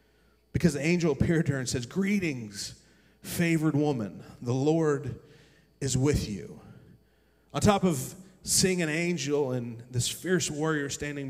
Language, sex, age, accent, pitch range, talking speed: English, male, 30-49, American, 120-160 Hz, 145 wpm